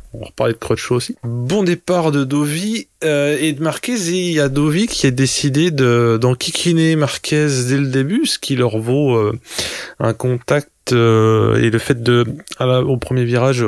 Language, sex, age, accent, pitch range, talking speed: French, male, 20-39, French, 115-140 Hz, 195 wpm